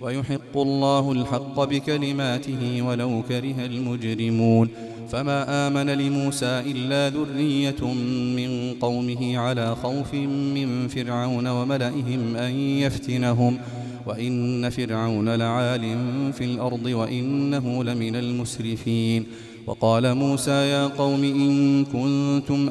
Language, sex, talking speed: Arabic, male, 90 wpm